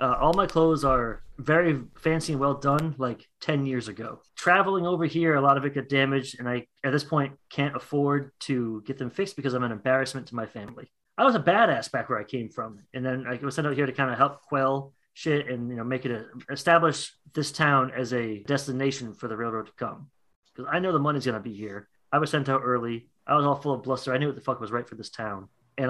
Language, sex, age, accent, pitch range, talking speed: English, male, 30-49, American, 120-145 Hz, 255 wpm